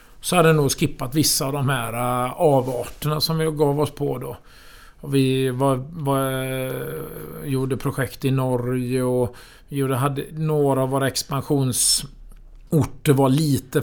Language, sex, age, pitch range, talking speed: Swedish, male, 50-69, 125-150 Hz, 140 wpm